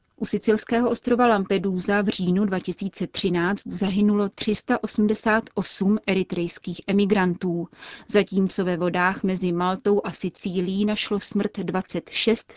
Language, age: Czech, 30-49